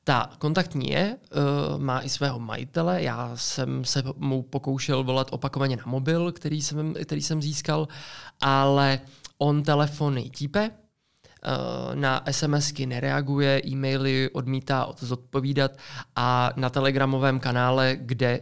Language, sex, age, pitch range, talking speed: Czech, male, 20-39, 130-150 Hz, 115 wpm